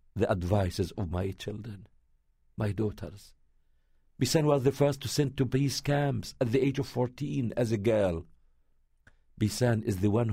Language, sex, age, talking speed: English, male, 50-69, 165 wpm